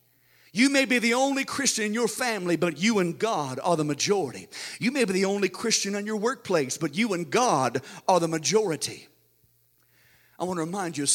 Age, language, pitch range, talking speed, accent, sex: 50-69, English, 165-225 Hz, 205 wpm, American, male